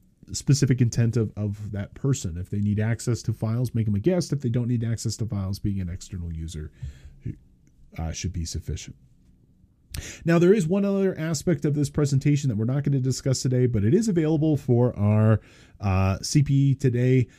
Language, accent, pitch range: English, American, 100-135 Hz